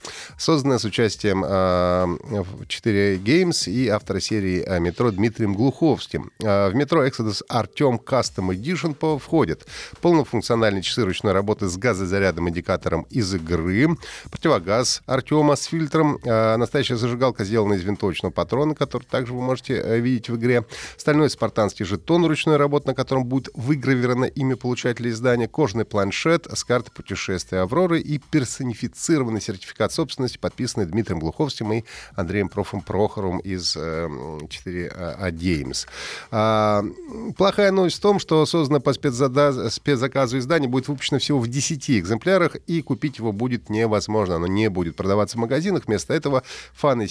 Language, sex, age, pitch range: Russian, male, 30-49, 95-140 Hz